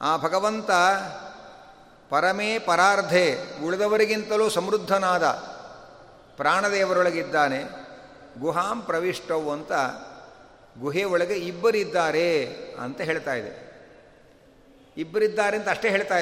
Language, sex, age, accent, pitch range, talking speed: Kannada, male, 60-79, native, 180-220 Hz, 70 wpm